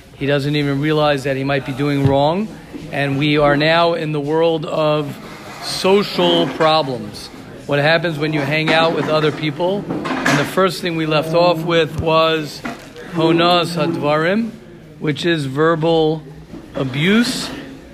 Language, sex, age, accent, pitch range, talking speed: English, male, 40-59, American, 150-165 Hz, 145 wpm